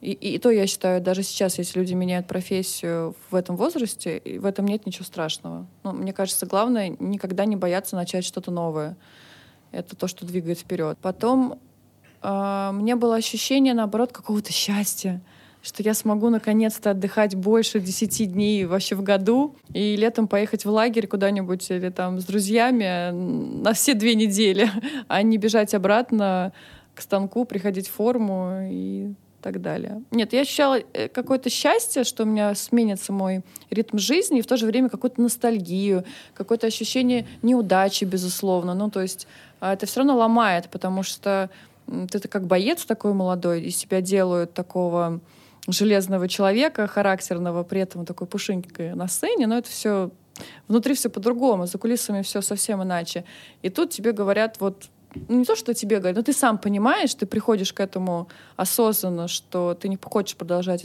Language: Russian